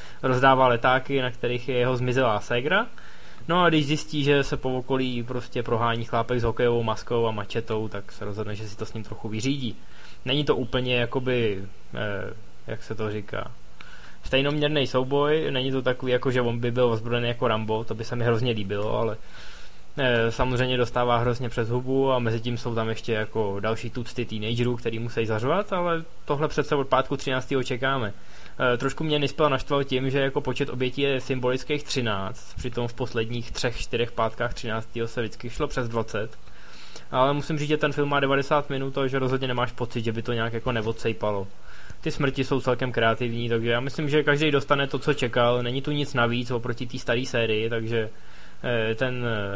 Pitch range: 115-130 Hz